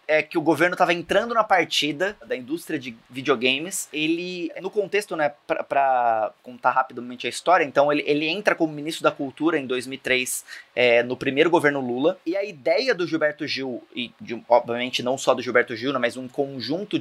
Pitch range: 145-205 Hz